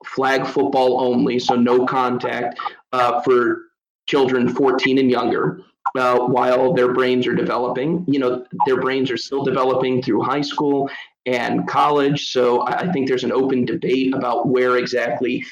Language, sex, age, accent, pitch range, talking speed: English, male, 30-49, American, 125-145 Hz, 155 wpm